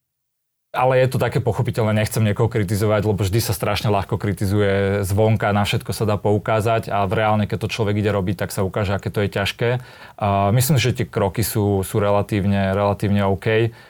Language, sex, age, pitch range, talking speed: Slovak, male, 30-49, 100-110 Hz, 200 wpm